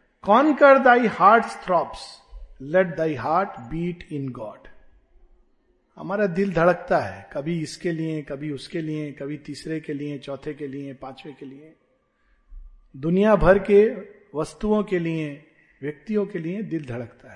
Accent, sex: native, male